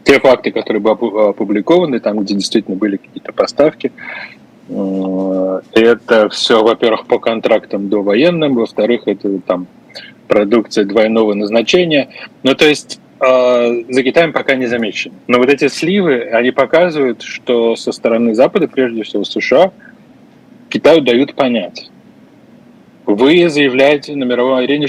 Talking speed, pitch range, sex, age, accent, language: 130 wpm, 105-130 Hz, male, 20-39, native, Russian